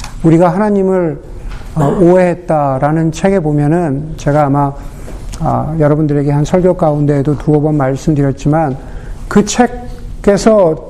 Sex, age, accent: male, 50-69, native